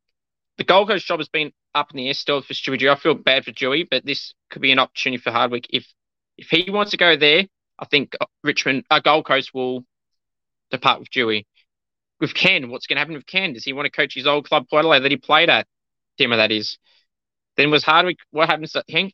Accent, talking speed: Australian, 230 wpm